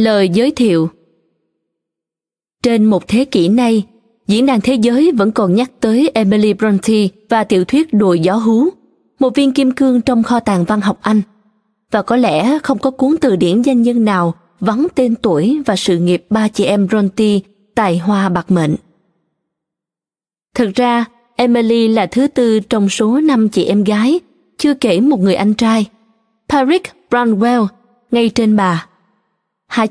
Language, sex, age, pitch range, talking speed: Vietnamese, female, 20-39, 200-250 Hz, 165 wpm